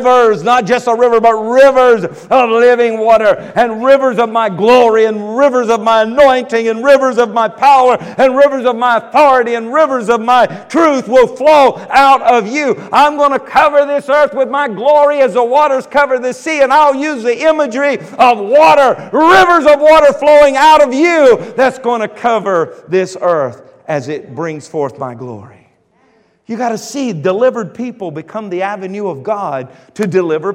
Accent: American